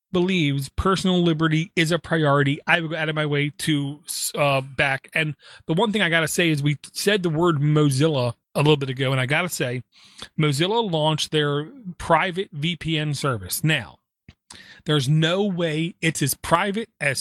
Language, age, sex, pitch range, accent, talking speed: English, 30-49, male, 145-175 Hz, American, 185 wpm